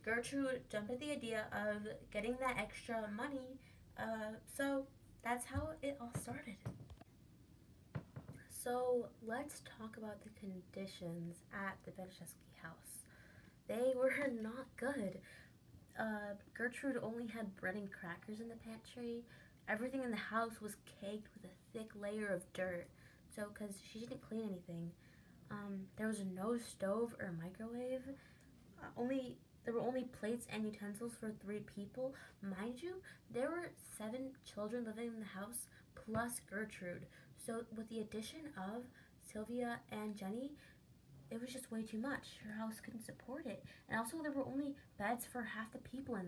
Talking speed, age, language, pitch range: 155 wpm, 10-29, English, 200-245 Hz